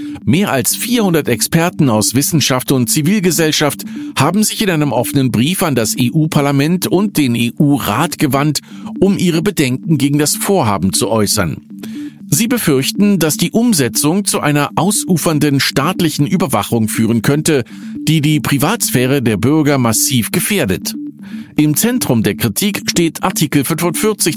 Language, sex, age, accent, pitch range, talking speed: German, male, 50-69, German, 125-200 Hz, 135 wpm